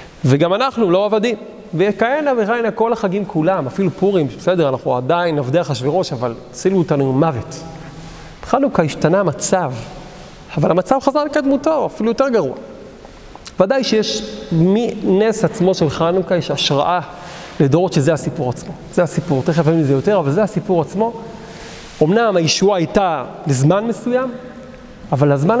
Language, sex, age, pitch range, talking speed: Hebrew, male, 40-59, 155-205 Hz, 145 wpm